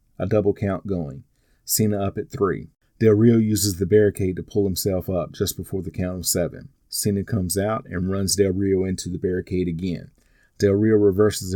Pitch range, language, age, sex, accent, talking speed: 95-105 Hz, English, 40-59, male, American, 190 wpm